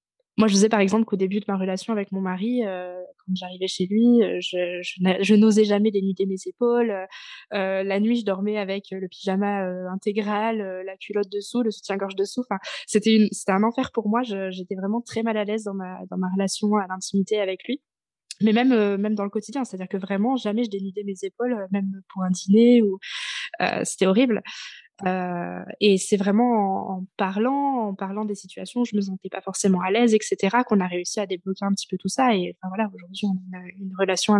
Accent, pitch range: French, 190-220 Hz